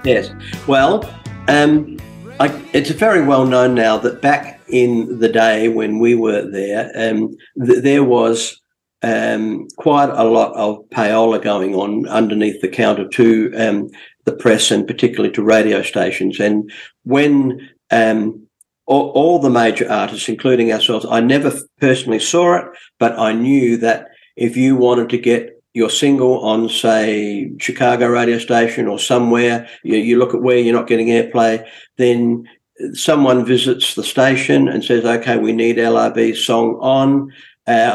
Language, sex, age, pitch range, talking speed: English, male, 50-69, 115-130 Hz, 155 wpm